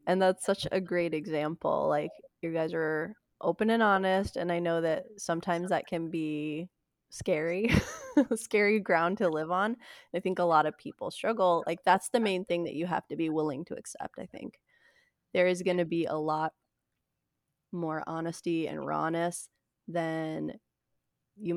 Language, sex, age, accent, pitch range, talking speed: English, female, 20-39, American, 165-210 Hz, 175 wpm